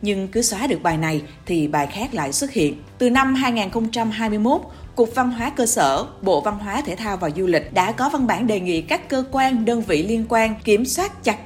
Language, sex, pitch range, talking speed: Vietnamese, female, 180-250 Hz, 230 wpm